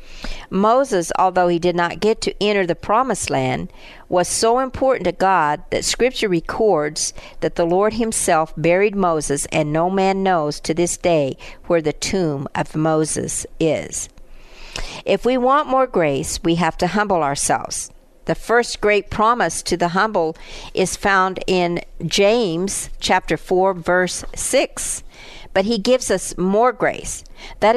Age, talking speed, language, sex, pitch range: 50-69, 150 wpm, English, female, 165-210 Hz